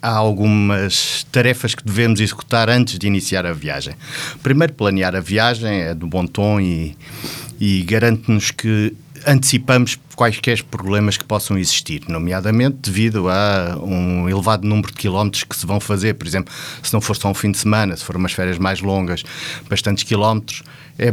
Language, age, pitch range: Portuguese, 50-69, 100-125 Hz